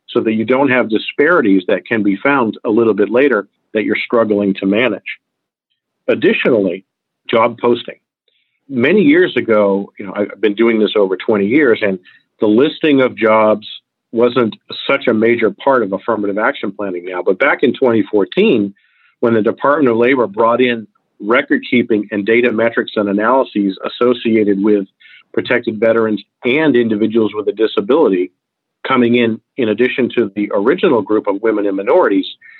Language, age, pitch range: English, 50-69, 105-120 Hz